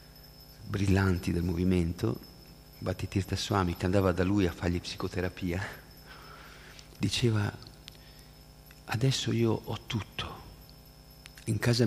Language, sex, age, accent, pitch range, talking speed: Italian, male, 50-69, native, 95-130 Hz, 95 wpm